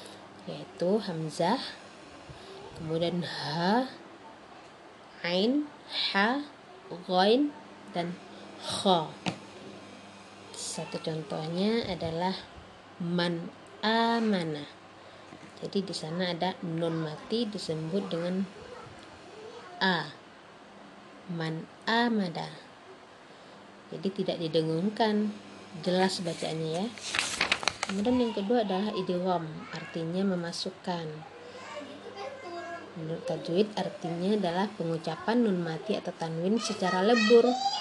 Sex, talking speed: female, 75 wpm